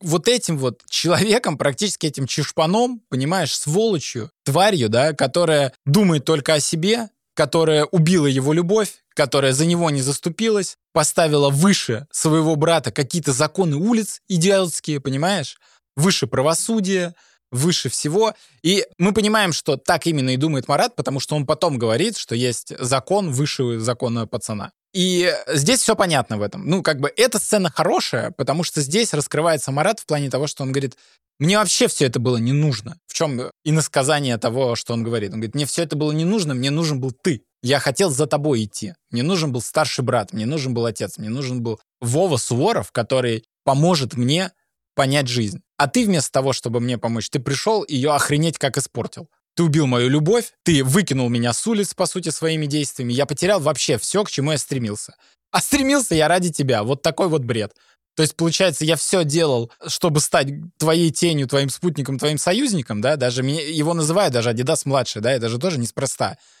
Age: 20-39